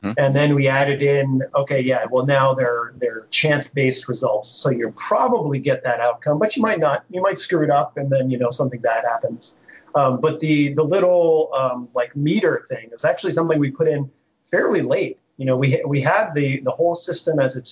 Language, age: English, 30-49